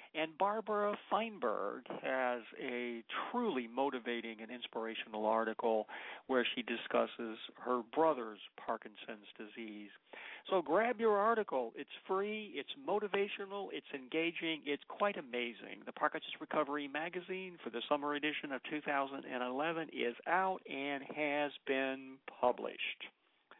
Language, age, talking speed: English, 50-69, 115 wpm